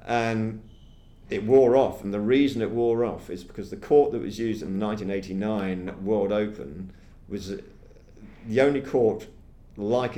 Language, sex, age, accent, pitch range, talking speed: English, male, 50-69, British, 95-110 Hz, 160 wpm